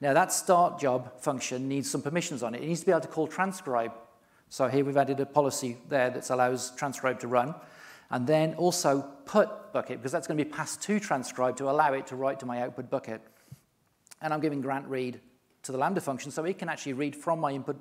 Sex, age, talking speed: male, 40-59, 230 wpm